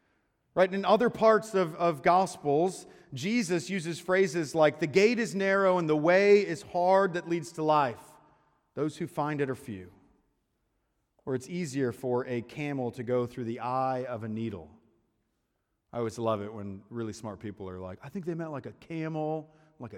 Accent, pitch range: American, 140-195 Hz